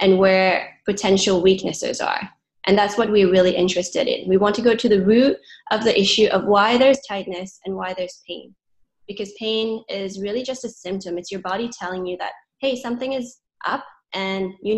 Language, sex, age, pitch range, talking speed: English, female, 20-39, 190-225 Hz, 200 wpm